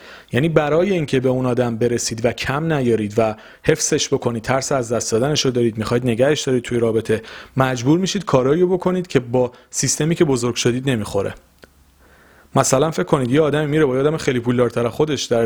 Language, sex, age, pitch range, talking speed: Persian, male, 40-59, 115-140 Hz, 180 wpm